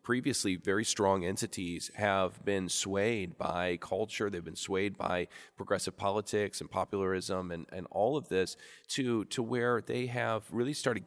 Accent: American